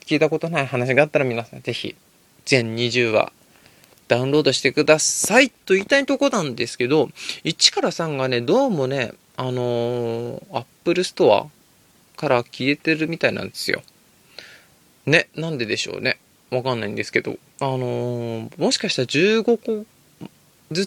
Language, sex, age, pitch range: Japanese, male, 20-39, 130-180 Hz